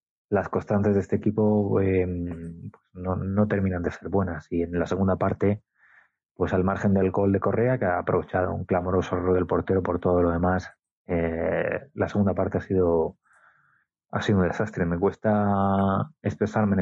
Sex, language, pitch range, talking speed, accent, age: male, Spanish, 95-105 Hz, 180 wpm, Spanish, 20-39